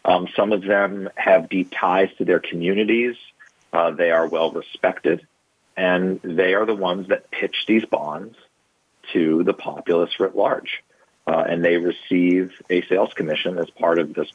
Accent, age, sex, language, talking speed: American, 40-59, male, English, 165 wpm